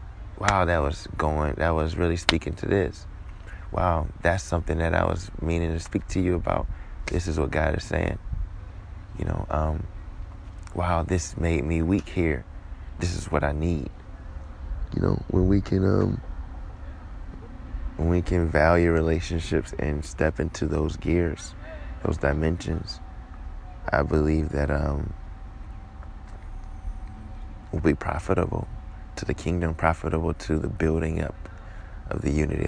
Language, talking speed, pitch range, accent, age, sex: English, 145 wpm, 80-95 Hz, American, 20-39, male